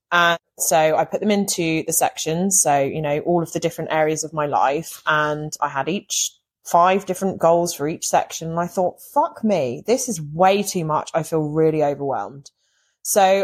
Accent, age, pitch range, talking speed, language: British, 20-39, 160-205 Hz, 195 wpm, English